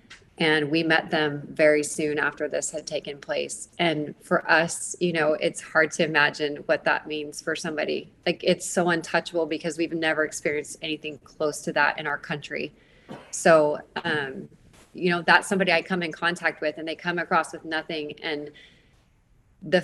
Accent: American